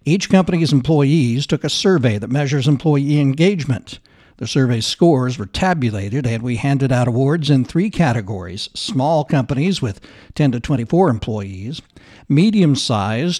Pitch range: 120-155 Hz